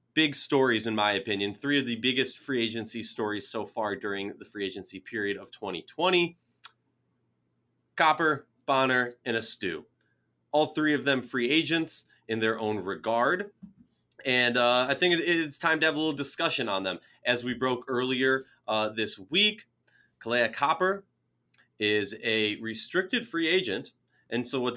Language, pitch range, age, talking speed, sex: English, 110-145 Hz, 30-49, 155 wpm, male